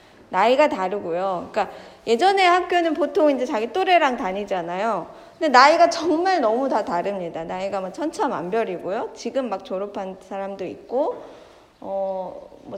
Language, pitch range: Korean, 220-315 Hz